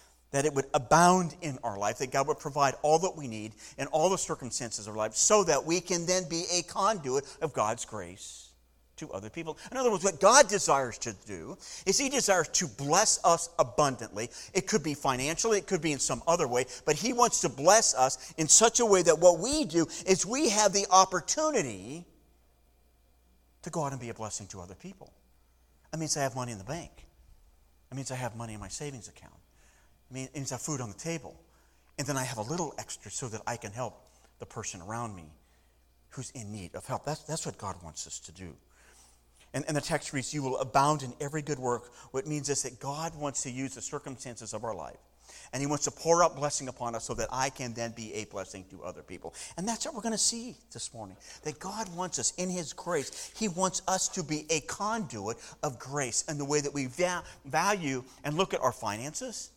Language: English